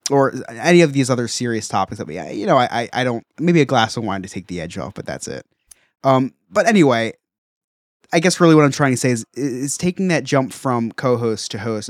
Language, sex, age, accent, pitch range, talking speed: English, male, 20-39, American, 110-135 Hz, 250 wpm